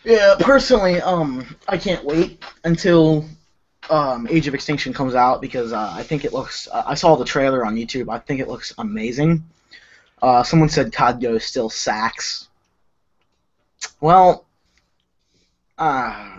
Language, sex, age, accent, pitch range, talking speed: English, male, 10-29, American, 130-170 Hz, 145 wpm